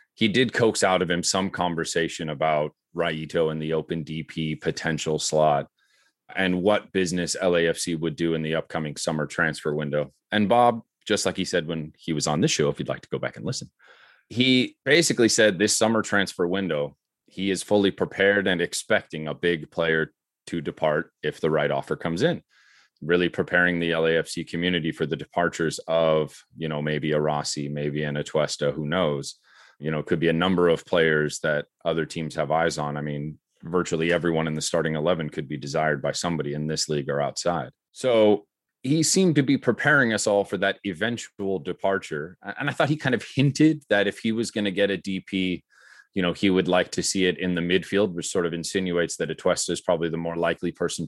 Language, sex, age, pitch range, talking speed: English, male, 30-49, 80-100 Hz, 205 wpm